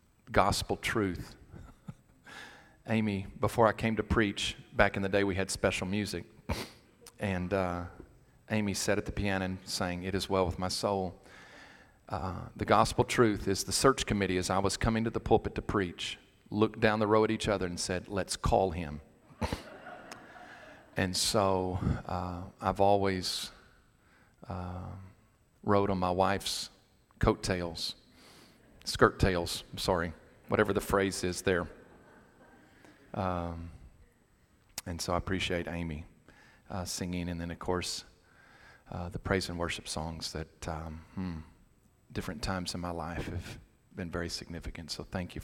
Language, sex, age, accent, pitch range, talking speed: English, male, 40-59, American, 90-105 Hz, 150 wpm